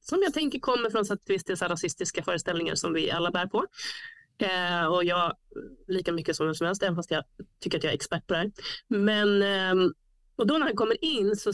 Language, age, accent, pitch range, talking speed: Swedish, 30-49, native, 170-230 Hz, 250 wpm